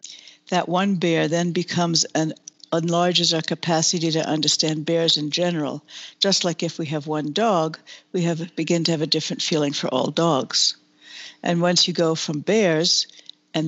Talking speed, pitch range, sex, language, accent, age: 170 wpm, 155-180 Hz, female, English, American, 60-79